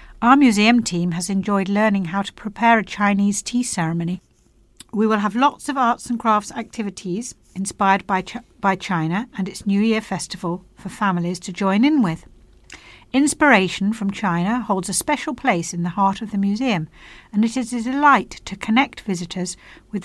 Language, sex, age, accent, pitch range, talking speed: English, female, 60-79, British, 180-225 Hz, 175 wpm